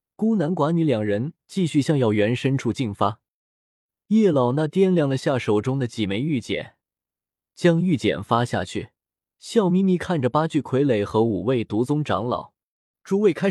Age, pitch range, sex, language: 20-39, 115-170 Hz, male, Chinese